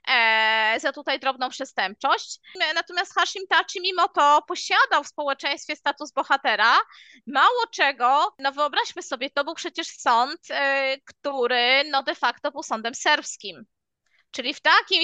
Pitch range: 260-330 Hz